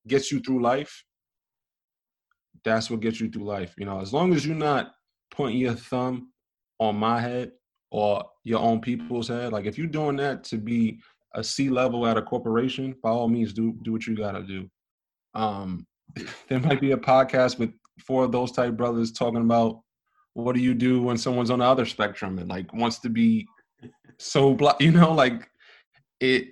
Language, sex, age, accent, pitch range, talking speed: English, male, 20-39, American, 110-130 Hz, 190 wpm